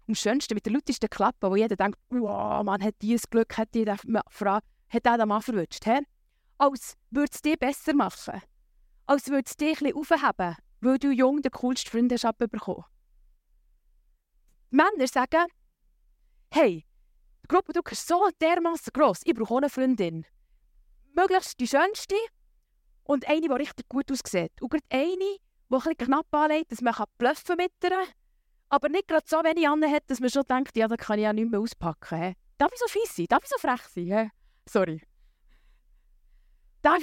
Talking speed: 175 wpm